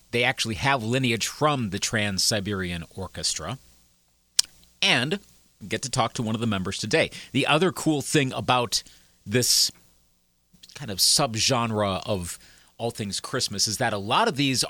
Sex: male